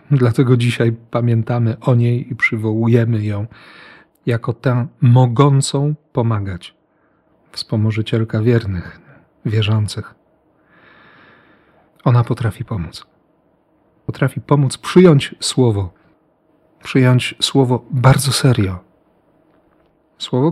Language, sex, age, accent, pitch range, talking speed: Polish, male, 40-59, native, 115-145 Hz, 80 wpm